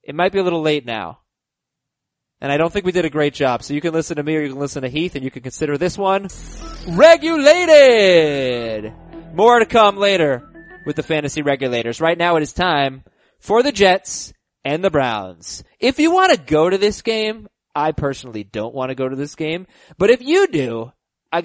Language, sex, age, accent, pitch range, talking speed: English, male, 20-39, American, 135-210 Hz, 215 wpm